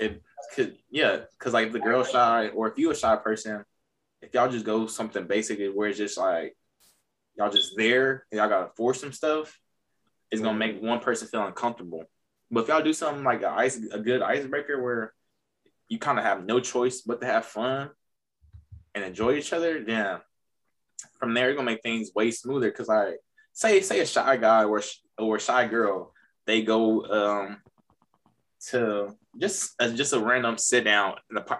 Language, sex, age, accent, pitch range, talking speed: English, male, 20-39, American, 110-125 Hz, 195 wpm